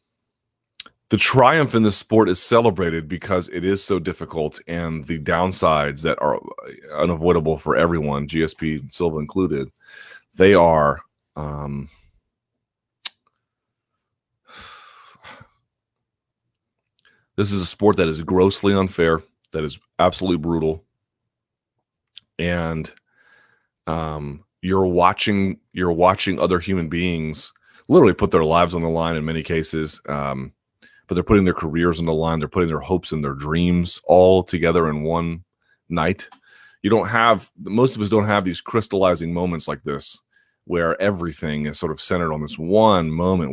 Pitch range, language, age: 80-95 Hz, English, 30-49